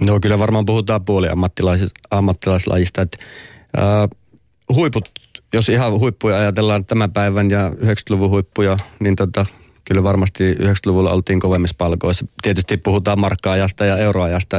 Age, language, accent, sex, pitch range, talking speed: 30-49, Finnish, native, male, 95-110 Hz, 130 wpm